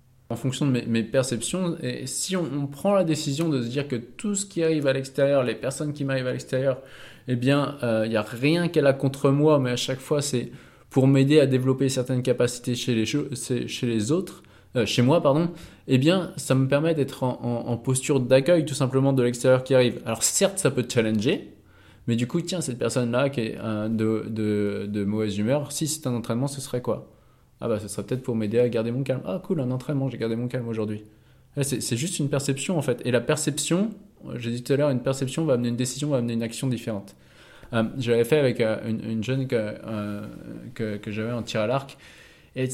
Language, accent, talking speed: French, French, 245 wpm